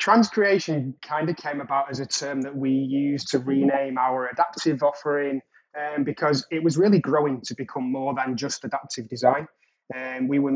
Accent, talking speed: British, 180 wpm